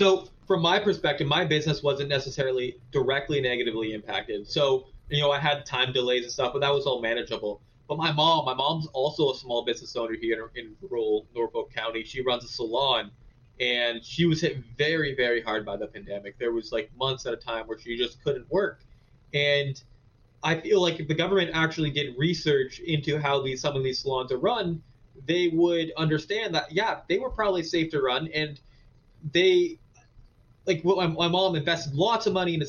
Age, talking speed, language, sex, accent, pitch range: 20-39, 200 wpm, English, male, American, 130-175 Hz